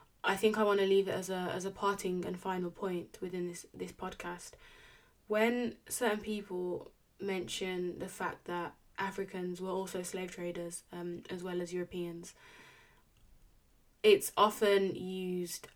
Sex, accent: female, British